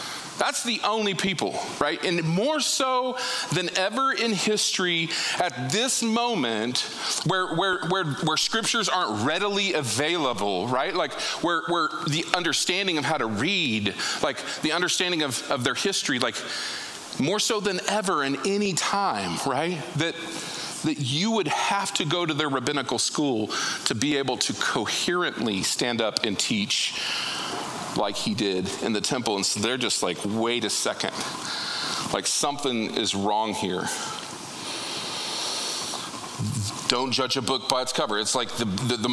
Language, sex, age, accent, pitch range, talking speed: English, male, 40-59, American, 130-190 Hz, 155 wpm